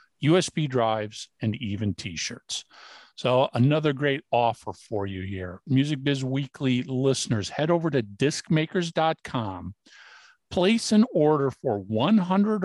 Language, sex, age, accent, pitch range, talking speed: English, male, 50-69, American, 120-165 Hz, 120 wpm